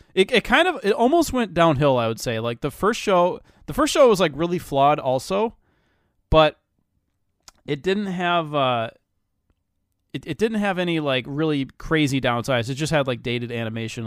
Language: English